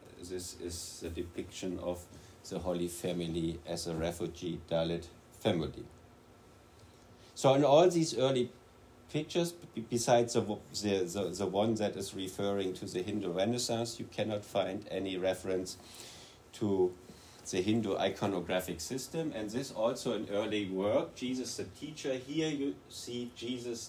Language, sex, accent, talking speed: English, male, German, 140 wpm